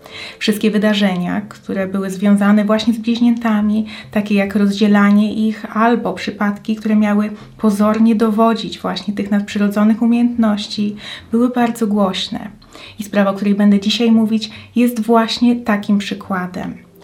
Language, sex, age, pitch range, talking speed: Polish, female, 20-39, 205-230 Hz, 125 wpm